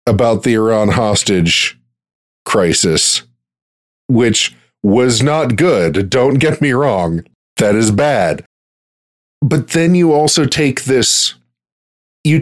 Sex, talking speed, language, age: male, 110 wpm, English, 40-59